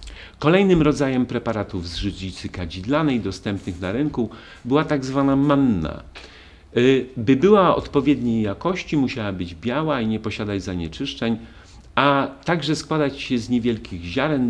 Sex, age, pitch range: male, 50-69, 100-140 Hz